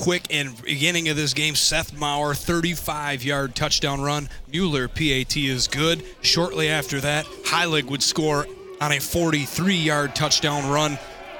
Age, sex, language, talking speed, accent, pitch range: 30-49, male, English, 135 wpm, American, 135-160 Hz